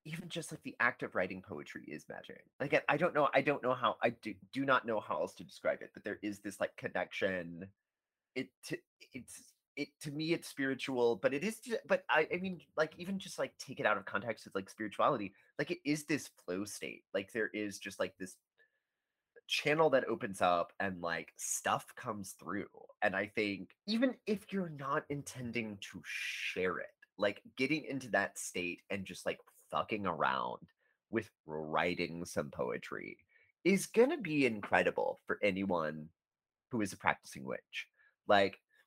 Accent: American